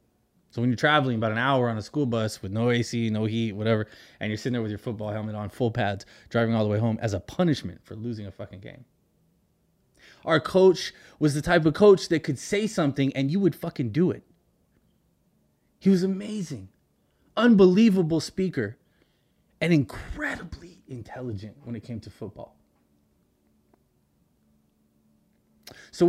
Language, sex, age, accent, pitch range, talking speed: English, male, 20-39, American, 110-170 Hz, 165 wpm